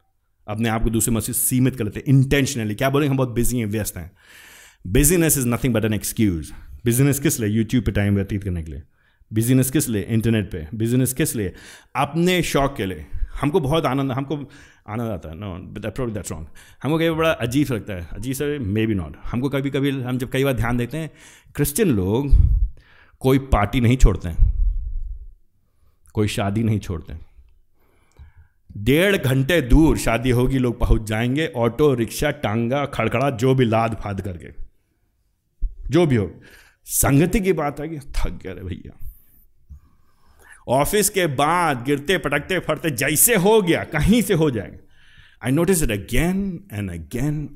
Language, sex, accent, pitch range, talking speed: Hindi, male, native, 90-135 Hz, 175 wpm